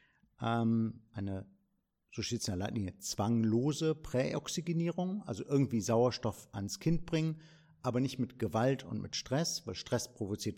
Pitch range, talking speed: 105-150 Hz, 140 wpm